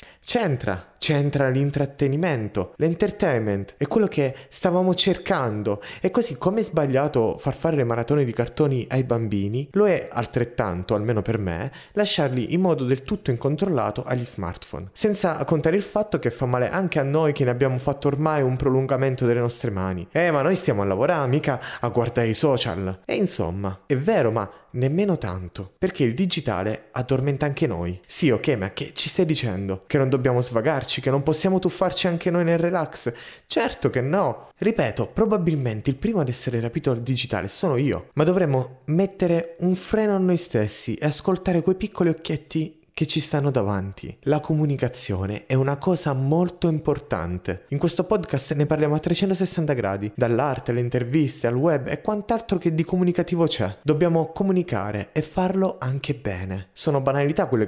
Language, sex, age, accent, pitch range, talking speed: Italian, male, 20-39, native, 120-170 Hz, 170 wpm